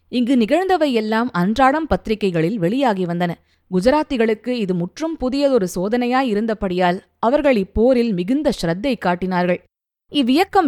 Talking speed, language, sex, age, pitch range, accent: 105 wpm, Tamil, female, 20-39, 180-260 Hz, native